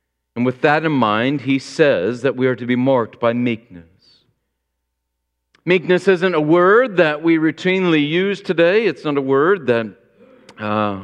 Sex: male